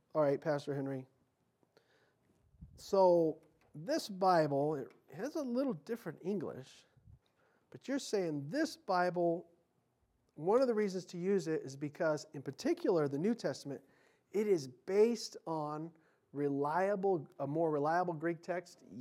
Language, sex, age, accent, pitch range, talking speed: English, male, 40-59, American, 170-225 Hz, 135 wpm